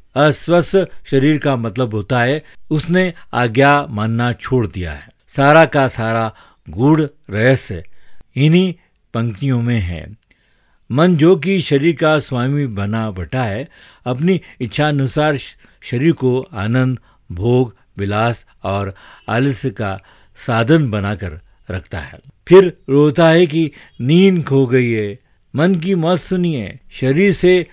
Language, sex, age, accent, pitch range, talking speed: Hindi, male, 50-69, native, 105-150 Hz, 125 wpm